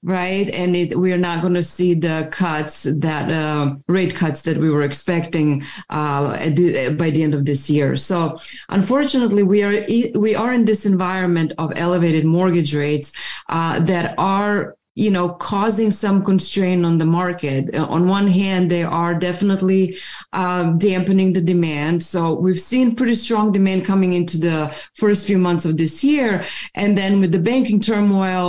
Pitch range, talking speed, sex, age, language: 170-200 Hz, 170 wpm, female, 30-49, English